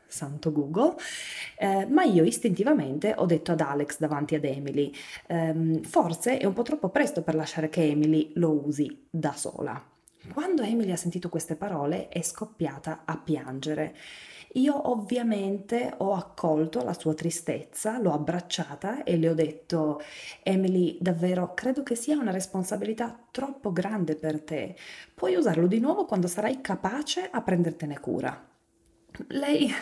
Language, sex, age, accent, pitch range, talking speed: Italian, female, 20-39, native, 160-230 Hz, 145 wpm